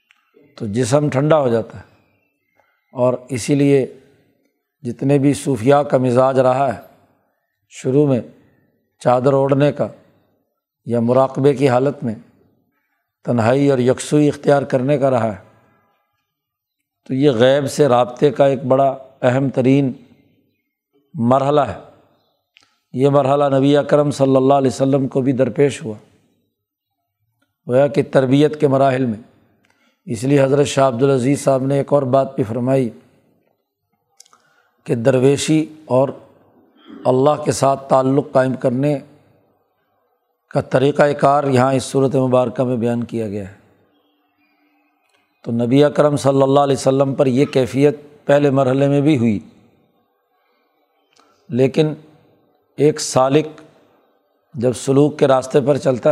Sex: male